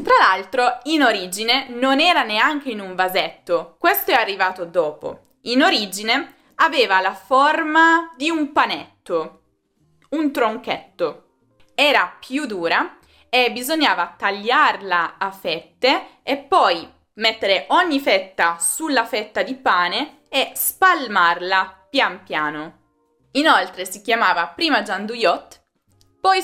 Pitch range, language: 185-280 Hz, Italian